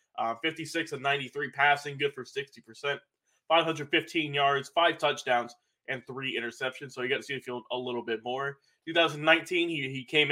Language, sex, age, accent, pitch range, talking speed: English, male, 20-39, American, 130-170 Hz, 155 wpm